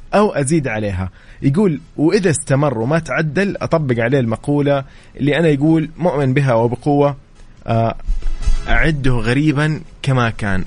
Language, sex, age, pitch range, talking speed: English, male, 20-39, 110-150 Hz, 120 wpm